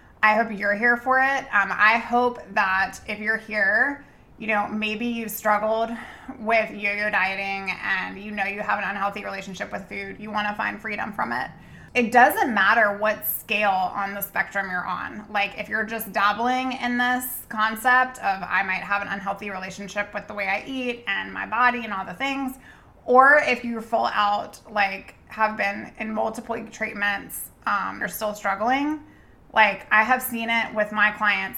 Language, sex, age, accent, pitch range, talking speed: English, female, 20-39, American, 200-235 Hz, 185 wpm